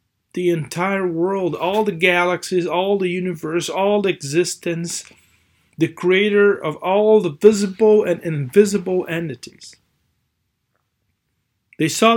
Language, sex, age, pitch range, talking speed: English, male, 40-59, 145-200 Hz, 115 wpm